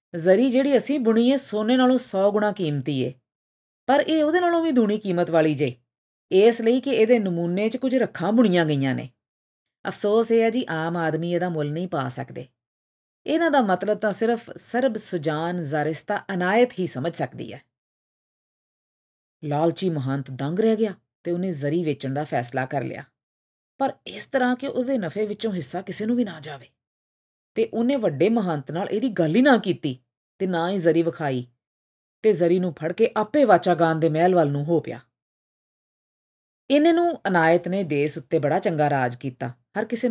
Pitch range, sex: 145-215 Hz, female